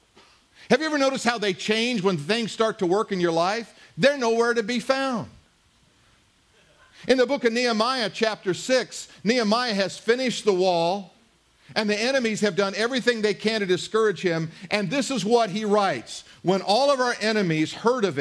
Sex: male